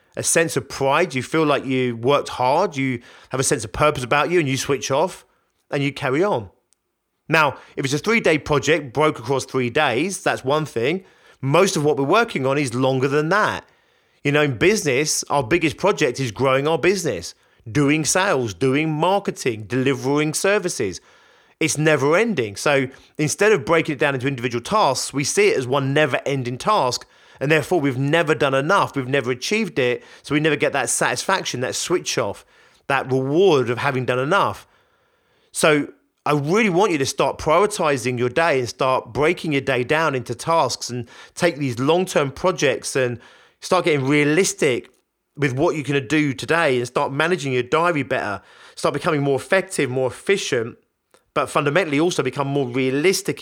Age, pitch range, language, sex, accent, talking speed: 30-49, 130-170 Hz, English, male, British, 185 wpm